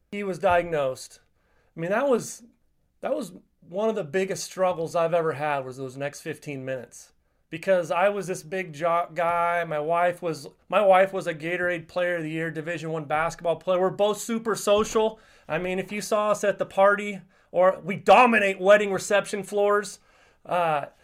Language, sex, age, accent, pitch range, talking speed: English, male, 30-49, American, 165-205 Hz, 185 wpm